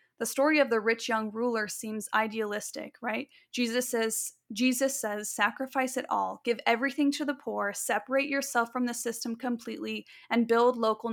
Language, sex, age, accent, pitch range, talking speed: English, female, 20-39, American, 220-260 Hz, 165 wpm